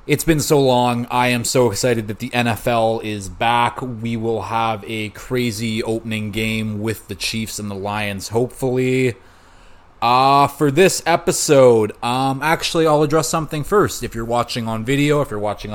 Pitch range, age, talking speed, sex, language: 105-130 Hz, 30-49, 170 wpm, male, English